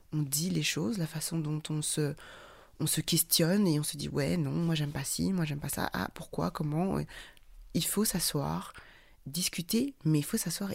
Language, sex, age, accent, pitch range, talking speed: French, female, 20-39, French, 150-195 Hz, 205 wpm